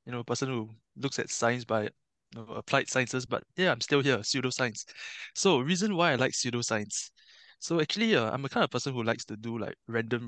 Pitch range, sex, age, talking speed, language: 115-140 Hz, male, 20-39, 230 wpm, English